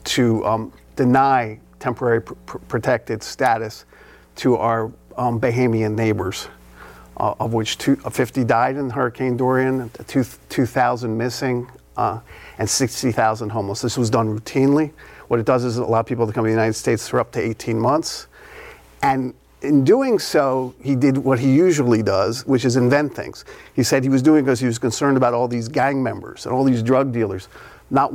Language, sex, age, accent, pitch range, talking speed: English, male, 50-69, American, 115-135 Hz, 180 wpm